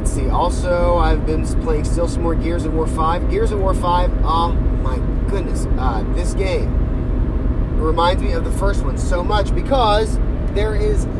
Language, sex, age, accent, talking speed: English, male, 30-49, American, 180 wpm